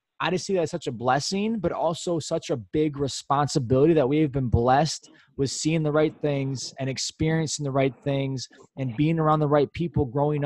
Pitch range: 130-165 Hz